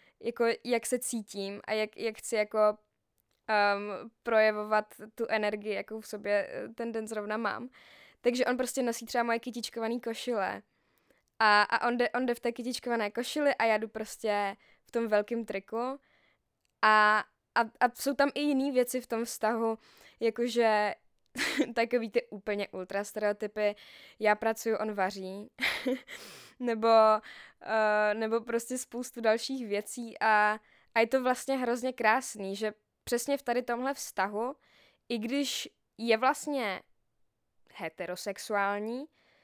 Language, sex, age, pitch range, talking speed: Czech, female, 10-29, 210-245 Hz, 140 wpm